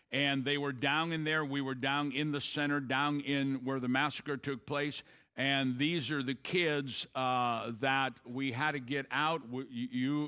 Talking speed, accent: 195 wpm, American